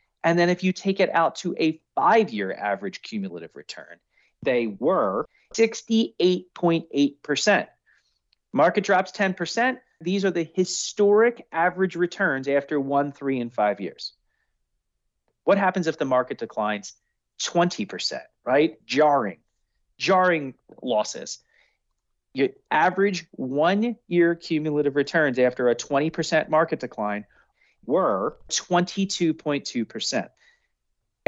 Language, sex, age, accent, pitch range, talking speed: English, male, 40-59, American, 135-185 Hz, 105 wpm